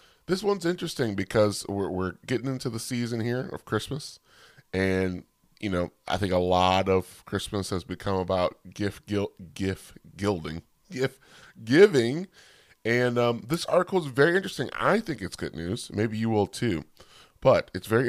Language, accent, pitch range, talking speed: English, American, 95-125 Hz, 165 wpm